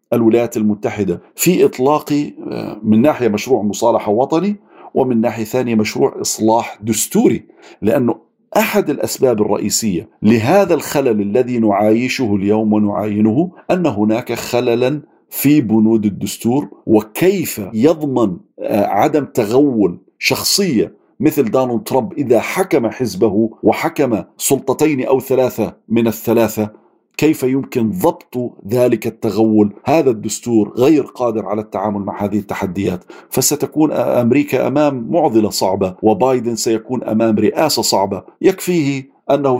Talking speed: 110 wpm